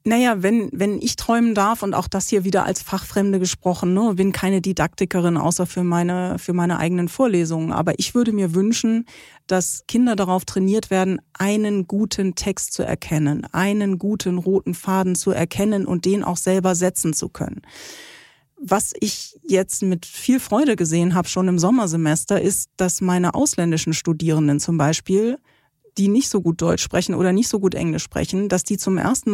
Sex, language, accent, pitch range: female, German, German, 180-210 Hz